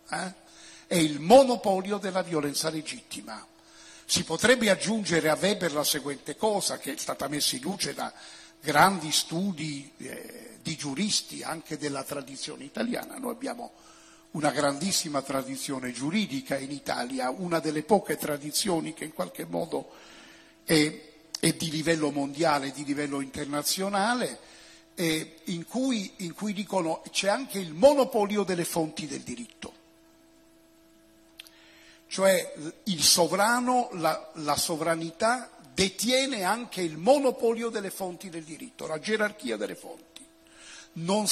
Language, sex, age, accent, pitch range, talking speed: Italian, male, 50-69, native, 155-225 Hz, 125 wpm